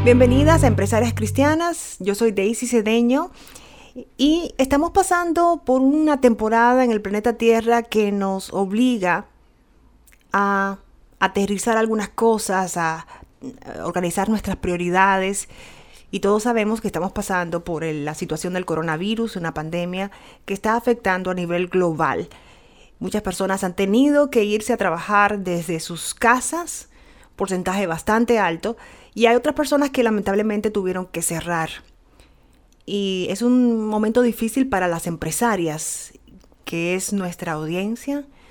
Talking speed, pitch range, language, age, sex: 130 wpm, 170-225 Hz, Spanish, 30-49, female